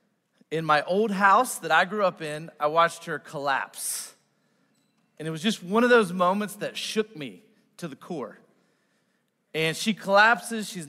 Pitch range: 165-220 Hz